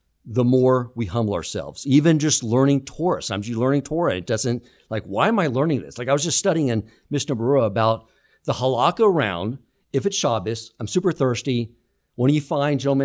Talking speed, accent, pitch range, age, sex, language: 200 wpm, American, 105-140 Hz, 50-69, male, English